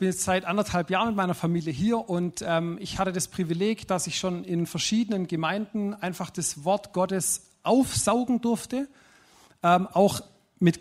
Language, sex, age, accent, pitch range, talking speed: German, male, 40-59, German, 170-210 Hz, 170 wpm